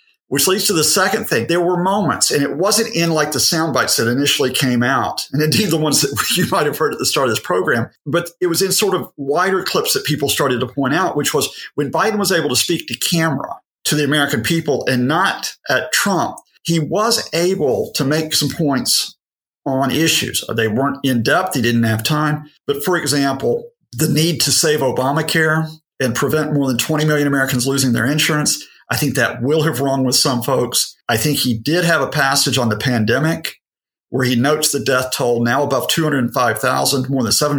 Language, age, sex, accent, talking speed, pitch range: English, 50-69, male, American, 215 wpm, 130-160 Hz